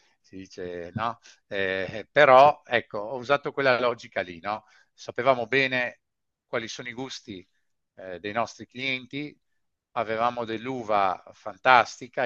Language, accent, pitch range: Italian, native, 95-120 Hz